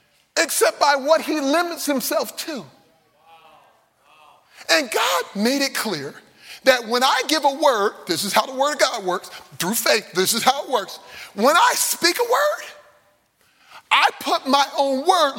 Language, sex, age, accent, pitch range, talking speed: English, male, 30-49, American, 255-340 Hz, 170 wpm